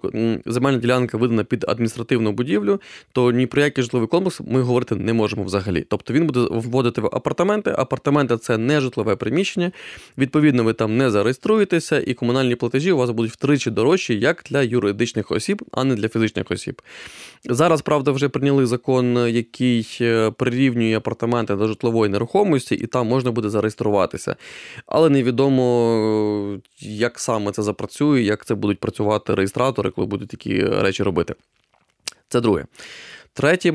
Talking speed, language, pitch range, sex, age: 150 wpm, English, 110-130 Hz, male, 20-39